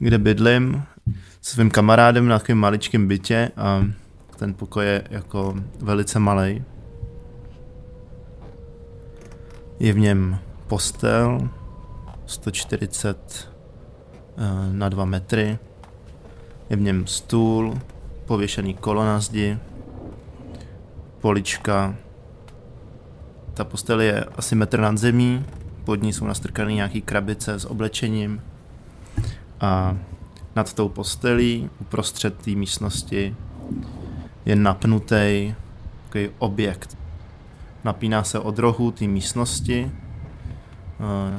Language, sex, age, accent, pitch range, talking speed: Czech, male, 20-39, native, 95-110 Hz, 95 wpm